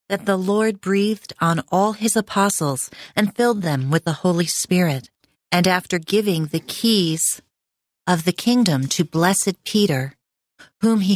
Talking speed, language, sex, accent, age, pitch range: 150 wpm, English, female, American, 40-59, 150-200 Hz